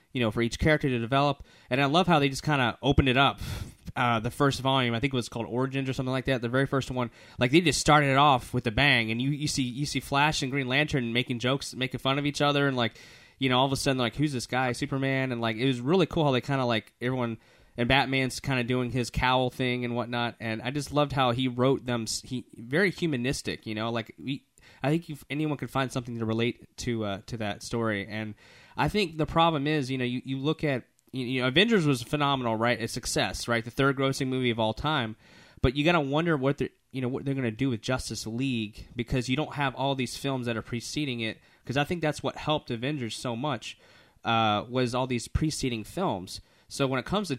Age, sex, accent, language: 20-39, male, American, English